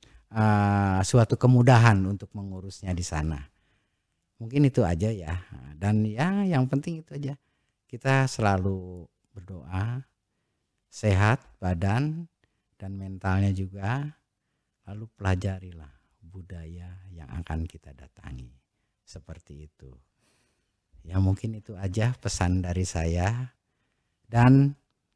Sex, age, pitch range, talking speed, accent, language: male, 50-69, 90-110 Hz, 100 wpm, native, Indonesian